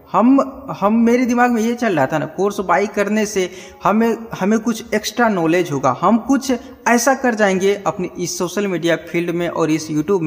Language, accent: Hindi, native